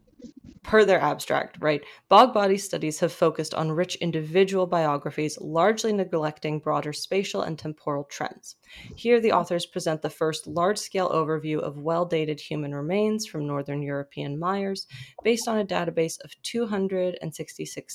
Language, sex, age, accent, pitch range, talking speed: English, female, 20-39, American, 155-185 Hz, 140 wpm